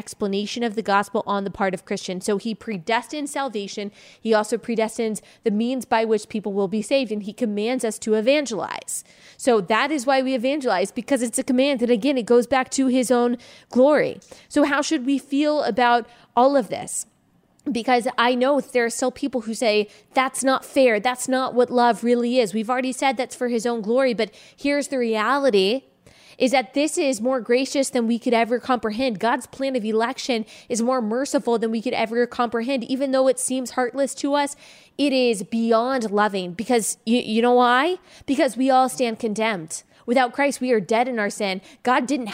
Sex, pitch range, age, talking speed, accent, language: female, 230-270 Hz, 20-39, 200 wpm, American, English